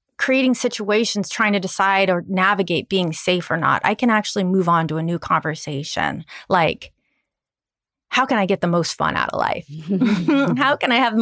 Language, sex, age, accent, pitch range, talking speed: English, female, 30-49, American, 175-220 Hz, 195 wpm